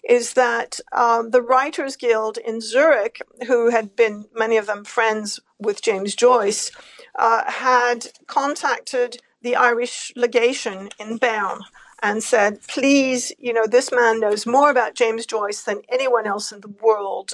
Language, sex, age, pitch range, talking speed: English, female, 50-69, 225-270 Hz, 150 wpm